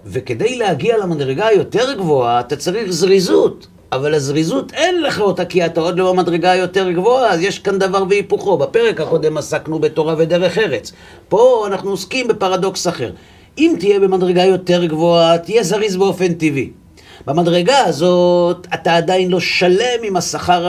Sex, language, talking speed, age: male, Hebrew, 155 wpm, 50-69